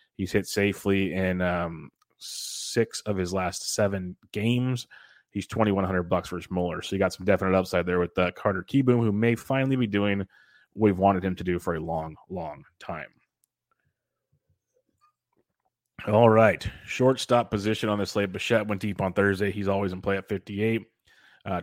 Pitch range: 95-110 Hz